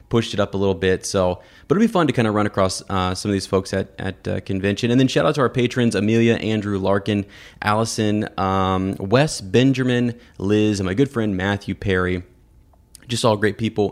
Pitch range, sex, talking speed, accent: 95-120 Hz, male, 215 wpm, American